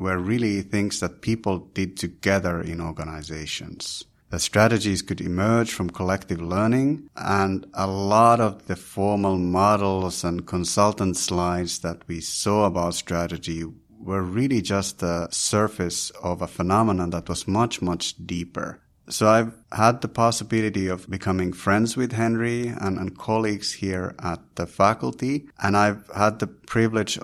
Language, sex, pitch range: English, male, 90-105 Hz